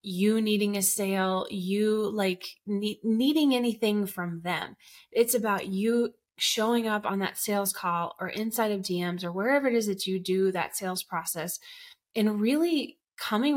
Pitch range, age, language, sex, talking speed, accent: 190-240 Hz, 20-39, English, female, 160 wpm, American